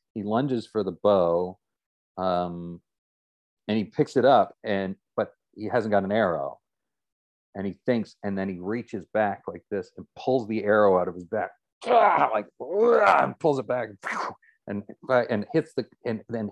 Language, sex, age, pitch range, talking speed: English, male, 40-59, 95-130 Hz, 165 wpm